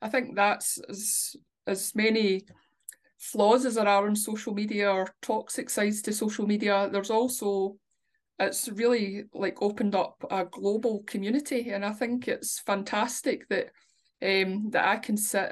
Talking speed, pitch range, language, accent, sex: 155 wpm, 200-245 Hz, English, British, female